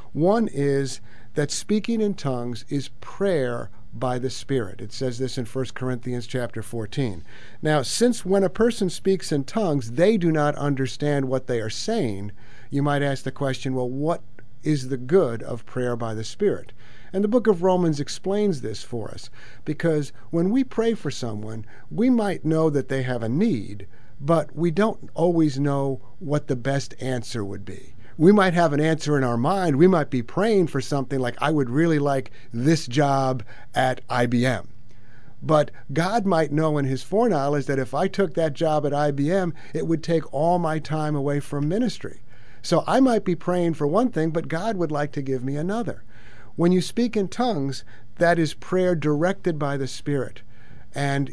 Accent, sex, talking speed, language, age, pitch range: American, male, 185 wpm, English, 50-69, 120-165 Hz